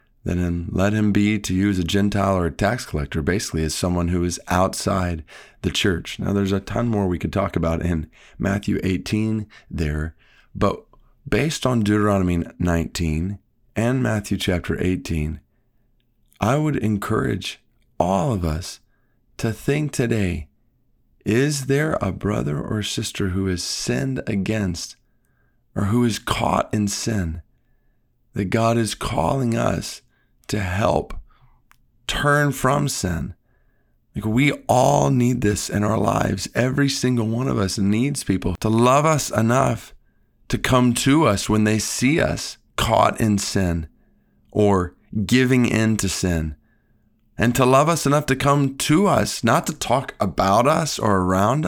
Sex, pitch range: male, 95-125 Hz